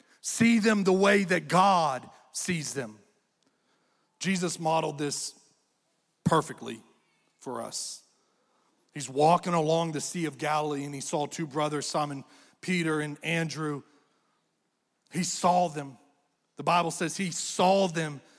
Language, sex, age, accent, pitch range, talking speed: English, male, 40-59, American, 150-185 Hz, 125 wpm